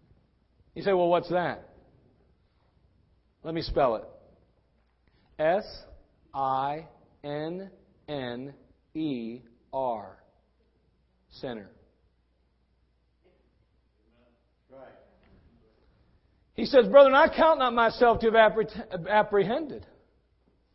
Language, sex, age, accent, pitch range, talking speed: English, male, 40-59, American, 160-260 Hz, 65 wpm